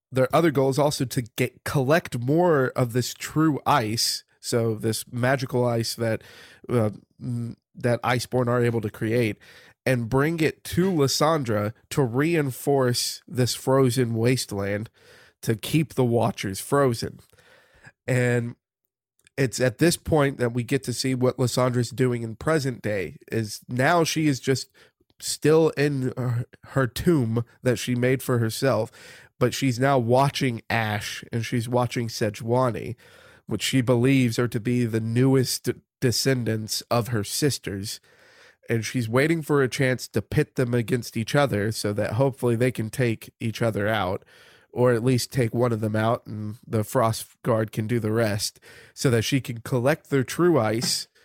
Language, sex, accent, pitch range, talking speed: English, male, American, 115-135 Hz, 160 wpm